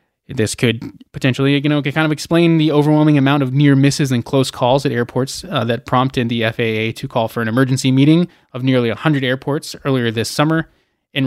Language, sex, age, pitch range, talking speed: English, male, 20-39, 120-150 Hz, 200 wpm